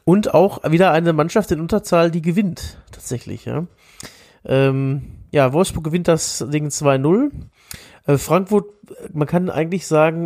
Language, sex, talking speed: German, male, 135 wpm